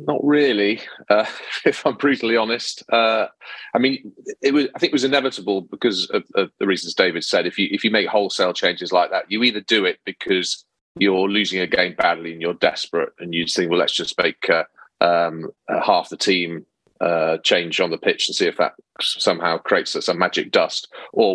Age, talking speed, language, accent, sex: 30-49, 200 wpm, English, British, male